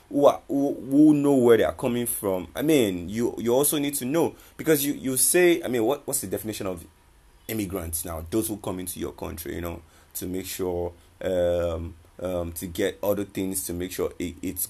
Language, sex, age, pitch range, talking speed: English, male, 20-39, 85-115 Hz, 210 wpm